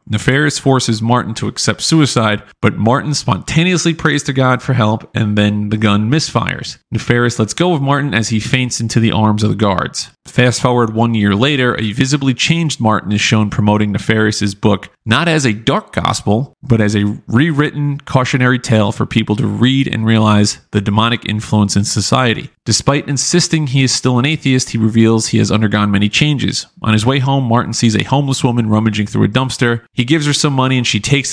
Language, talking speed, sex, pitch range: English, 200 wpm, male, 105-135 Hz